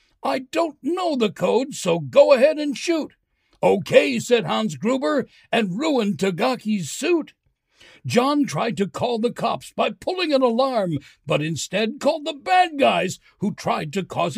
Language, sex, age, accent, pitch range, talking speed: English, male, 60-79, American, 220-300 Hz, 160 wpm